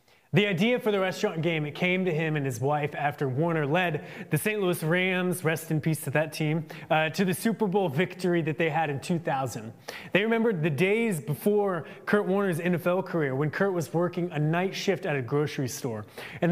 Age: 20-39